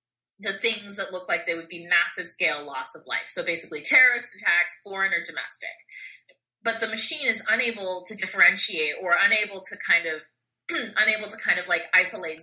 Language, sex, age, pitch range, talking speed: English, female, 20-39, 170-230 Hz, 185 wpm